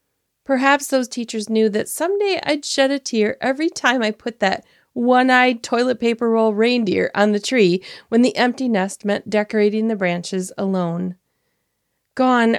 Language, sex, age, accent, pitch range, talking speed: English, female, 30-49, American, 195-255 Hz, 155 wpm